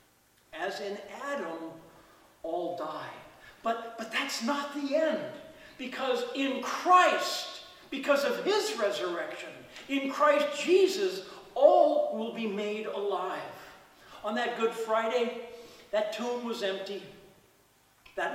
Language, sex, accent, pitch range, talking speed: English, male, American, 205-285 Hz, 115 wpm